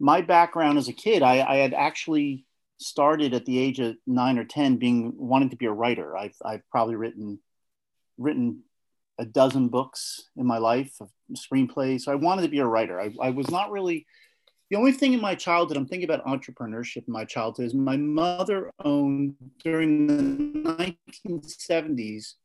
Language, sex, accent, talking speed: English, male, American, 175 wpm